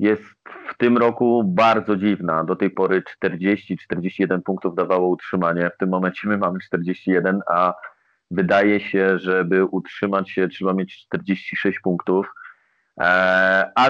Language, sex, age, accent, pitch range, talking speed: Polish, male, 30-49, native, 100-120 Hz, 130 wpm